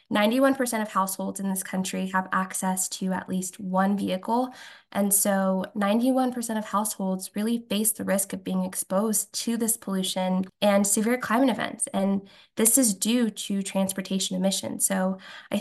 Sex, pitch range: female, 195-245 Hz